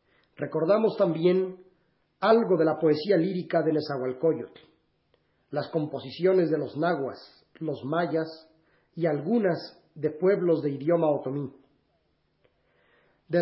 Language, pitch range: Spanish, 155-180 Hz